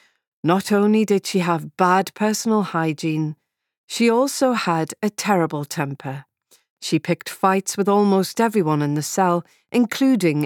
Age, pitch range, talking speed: 40-59, 155-225 Hz, 140 wpm